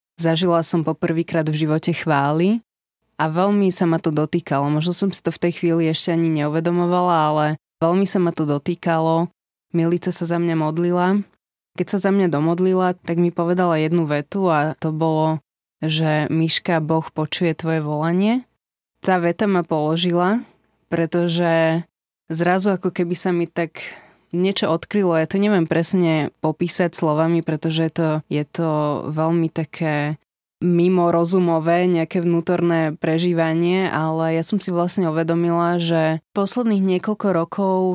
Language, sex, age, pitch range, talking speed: Slovak, female, 20-39, 160-180 Hz, 145 wpm